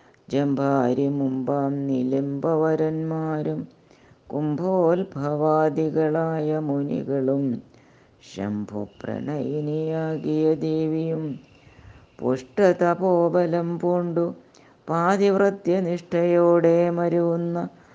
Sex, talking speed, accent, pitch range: female, 35 wpm, native, 135-170 Hz